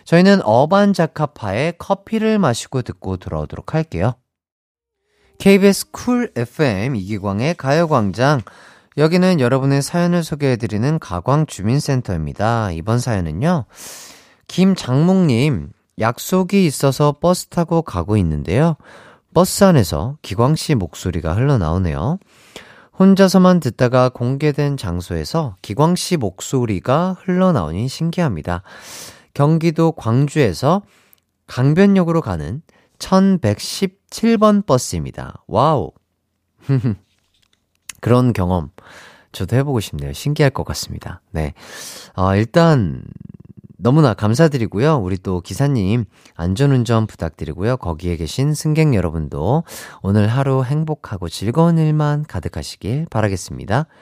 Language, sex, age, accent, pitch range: Korean, male, 30-49, native, 100-165 Hz